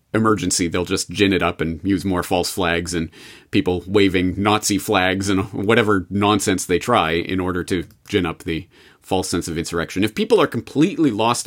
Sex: male